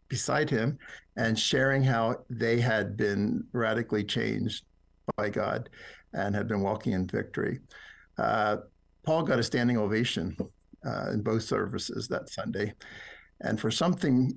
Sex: male